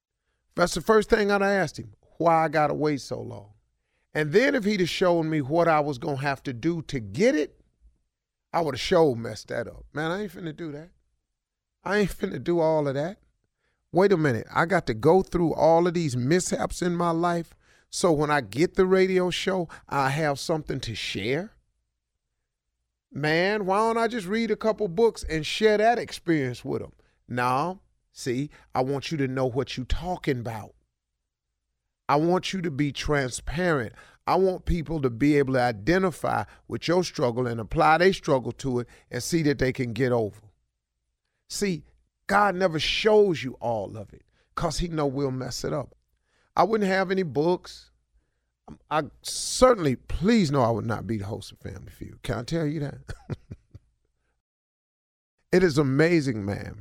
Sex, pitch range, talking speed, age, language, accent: male, 115-175 Hz, 185 wpm, 40-59, English, American